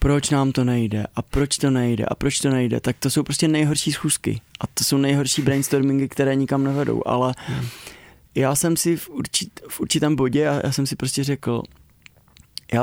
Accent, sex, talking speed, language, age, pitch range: native, male, 195 wpm, Czech, 20-39, 130-145 Hz